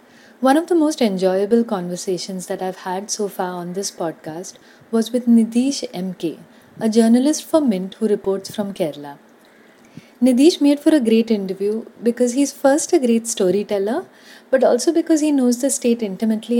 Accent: Indian